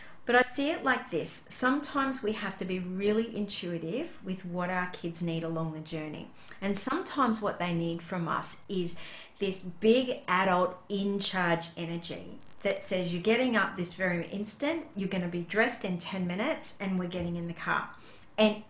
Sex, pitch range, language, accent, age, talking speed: female, 175-220 Hz, English, Australian, 40-59, 185 wpm